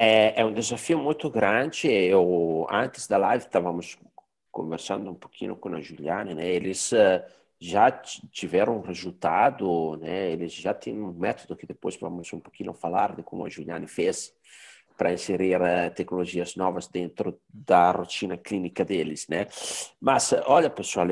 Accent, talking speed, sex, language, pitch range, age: Italian, 150 wpm, male, Portuguese, 95-150 Hz, 50-69